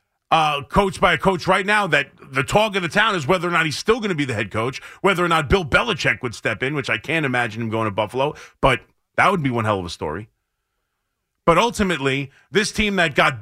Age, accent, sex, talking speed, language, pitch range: 30-49, American, male, 250 wpm, English, 150-200 Hz